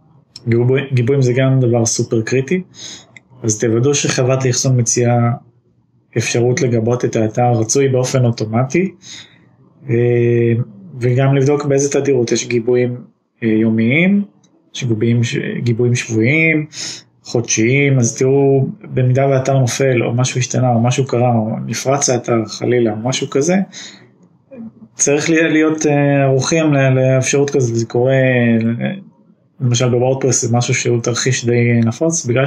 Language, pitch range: Hebrew, 115-140 Hz